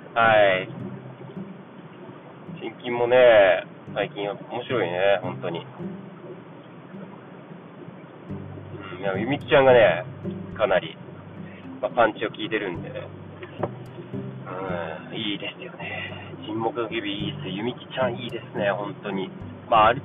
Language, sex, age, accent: Japanese, male, 30-49, native